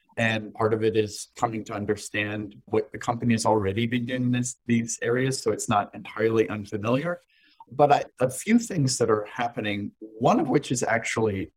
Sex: male